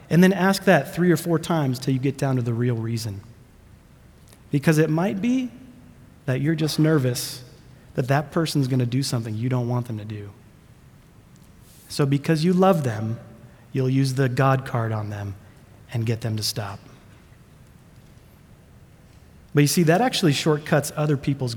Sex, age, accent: male, 30-49, American